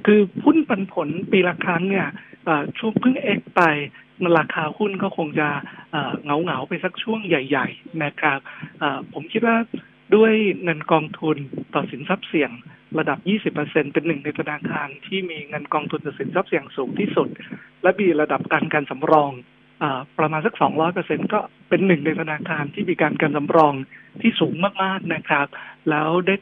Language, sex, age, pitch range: Thai, male, 60-79, 150-195 Hz